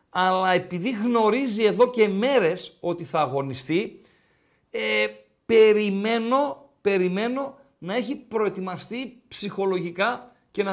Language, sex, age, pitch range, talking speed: Greek, male, 50-69, 140-205 Hz, 100 wpm